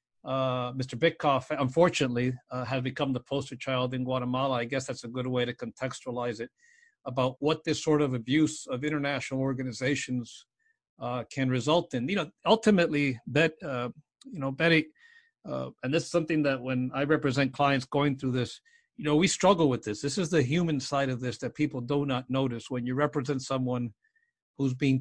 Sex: male